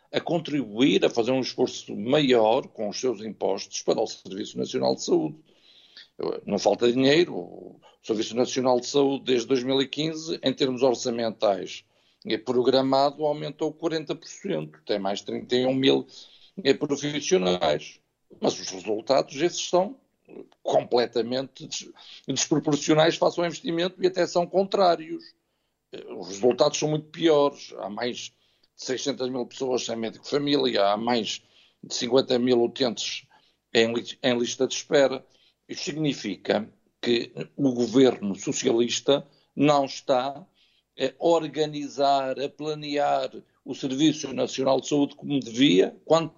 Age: 50-69